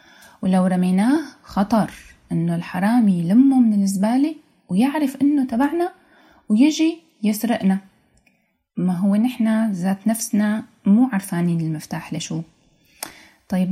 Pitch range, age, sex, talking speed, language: 190-255 Hz, 20-39, female, 100 wpm, Arabic